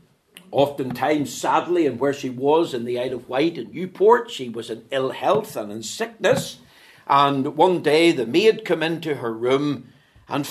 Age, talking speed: 60-79, 175 wpm